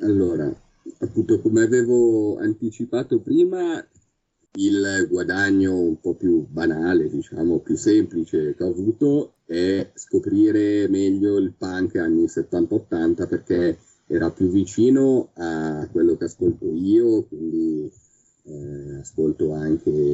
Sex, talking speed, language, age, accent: male, 115 wpm, Italian, 40-59, native